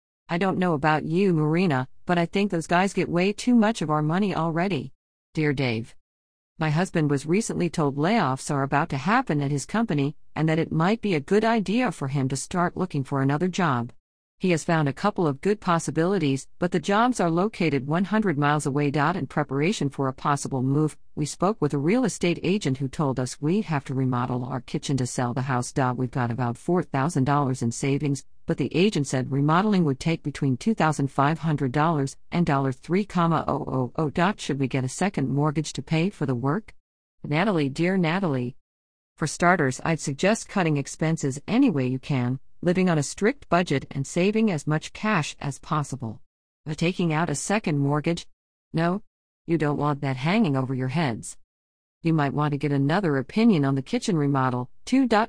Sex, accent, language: female, American, English